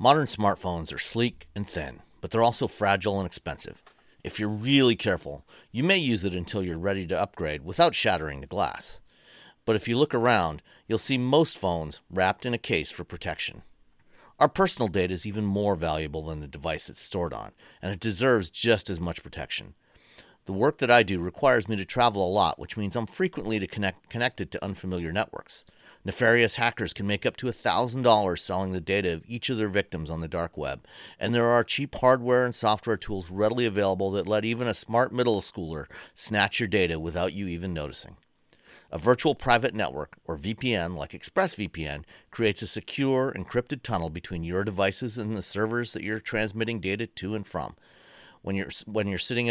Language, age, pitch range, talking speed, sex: English, 40-59, 95-120 Hz, 190 wpm, male